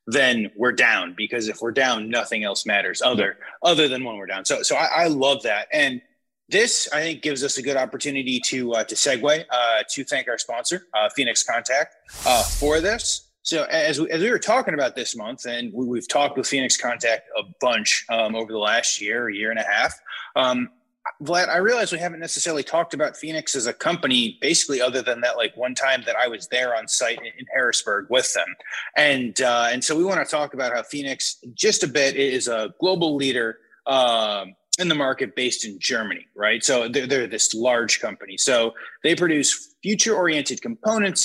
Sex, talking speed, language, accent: male, 205 wpm, English, American